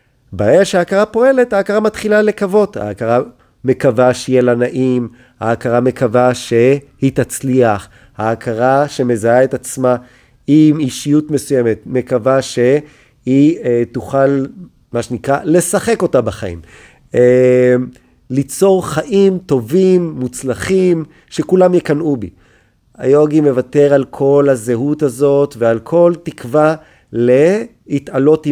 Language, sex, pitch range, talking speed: Hebrew, male, 120-155 Hz, 105 wpm